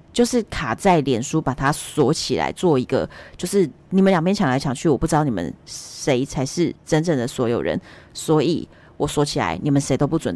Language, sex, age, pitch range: Chinese, female, 30-49, 135-175 Hz